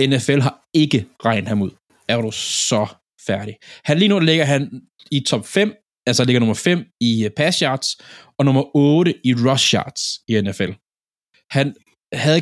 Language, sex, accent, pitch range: Danish, male, native, 115-140 Hz